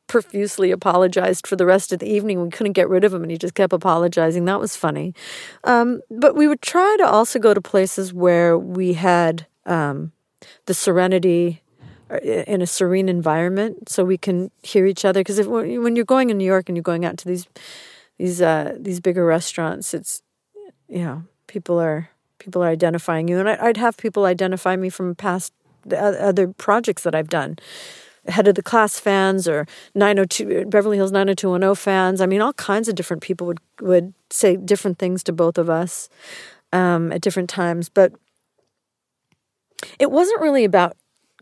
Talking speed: 180 wpm